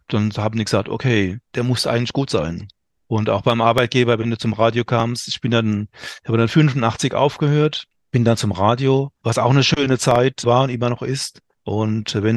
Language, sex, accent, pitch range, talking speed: German, male, German, 110-135 Hz, 205 wpm